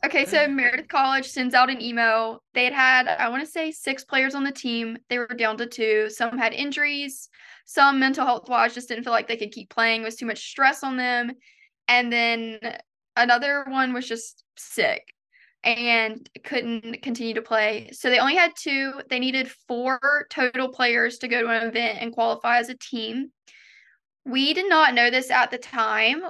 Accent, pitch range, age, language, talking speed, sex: American, 230-275 Hz, 10-29, English, 195 wpm, female